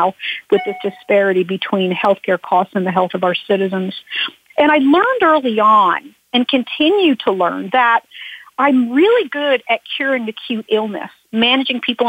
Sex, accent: female, American